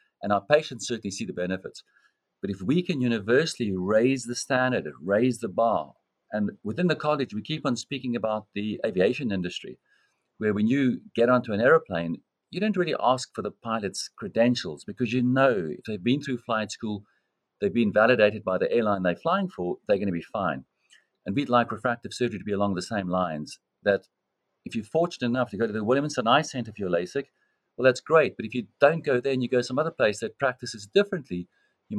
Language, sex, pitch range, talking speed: English, male, 105-140 Hz, 210 wpm